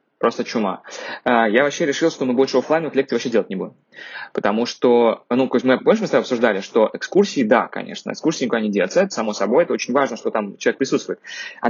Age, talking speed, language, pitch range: 20-39, 215 wpm, Russian, 120-160 Hz